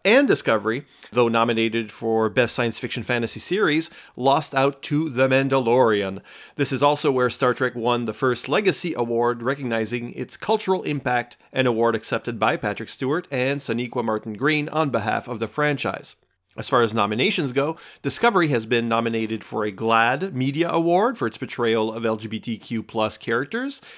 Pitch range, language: 110-145 Hz, English